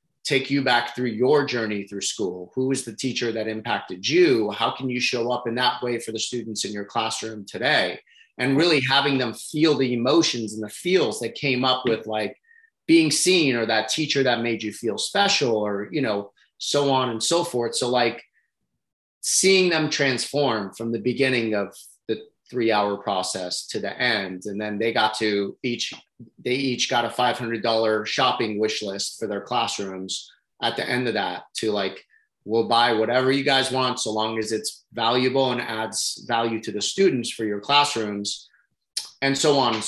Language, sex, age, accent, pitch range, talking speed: English, male, 30-49, American, 110-135 Hz, 190 wpm